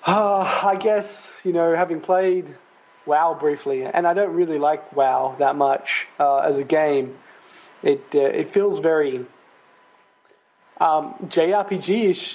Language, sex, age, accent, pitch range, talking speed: English, male, 20-39, Australian, 140-180 Hz, 135 wpm